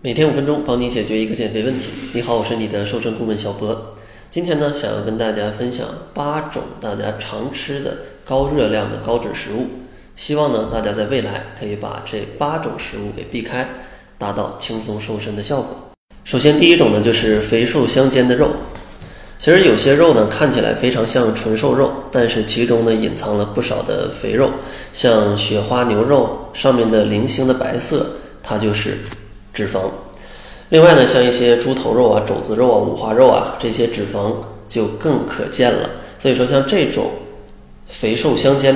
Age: 20-39